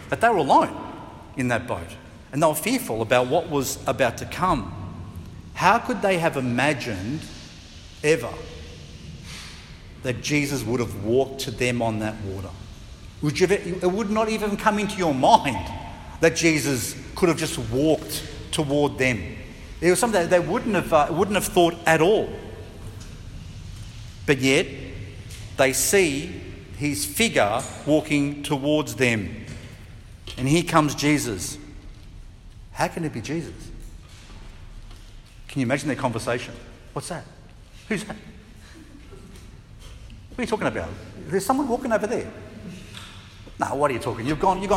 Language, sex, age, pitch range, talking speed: English, male, 50-69, 105-175 Hz, 145 wpm